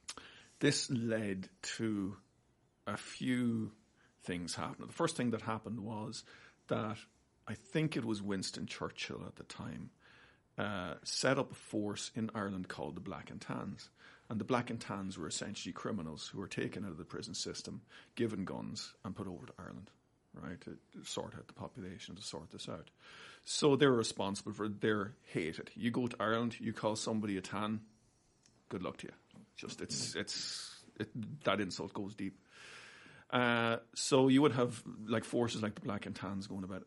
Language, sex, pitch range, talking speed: English, male, 95-120 Hz, 180 wpm